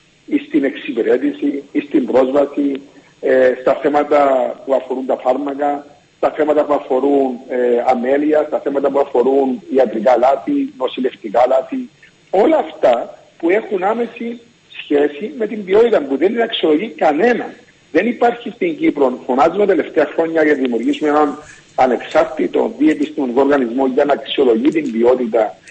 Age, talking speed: 50-69, 140 wpm